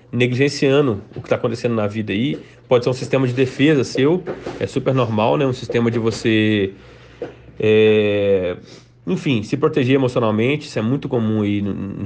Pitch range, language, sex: 110-130 Hz, Portuguese, male